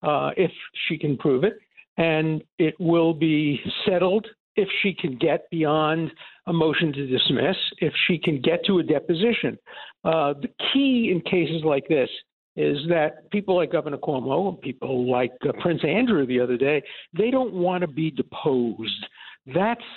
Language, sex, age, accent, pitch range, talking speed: English, male, 60-79, American, 145-200 Hz, 170 wpm